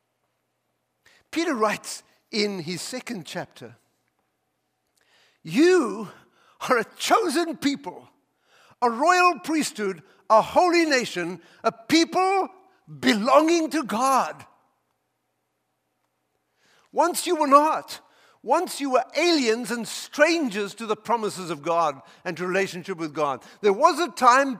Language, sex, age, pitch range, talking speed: English, male, 60-79, 210-310 Hz, 110 wpm